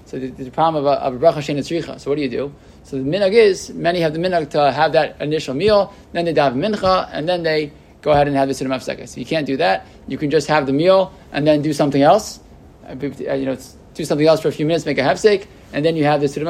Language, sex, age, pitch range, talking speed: English, male, 20-39, 140-170 Hz, 270 wpm